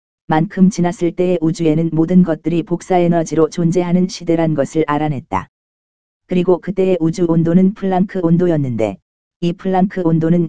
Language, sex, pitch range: Korean, female, 160-180 Hz